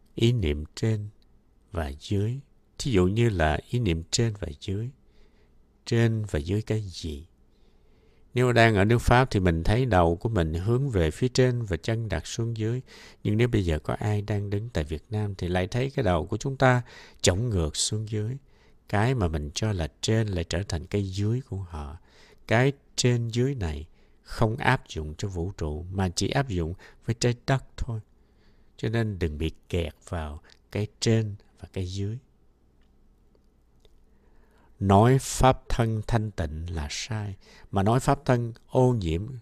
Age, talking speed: 60-79, 180 wpm